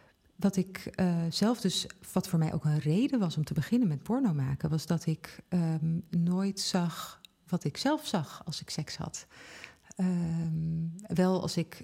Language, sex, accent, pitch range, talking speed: Dutch, female, Dutch, 160-185 Hz, 180 wpm